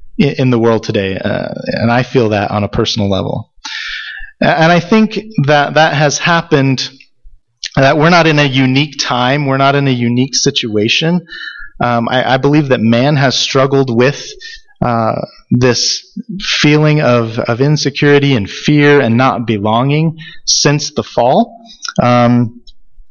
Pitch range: 120-150 Hz